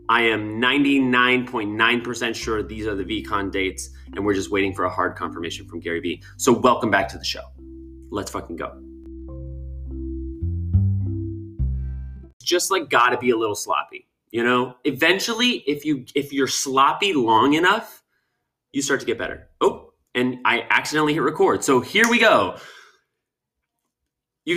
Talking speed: 150 wpm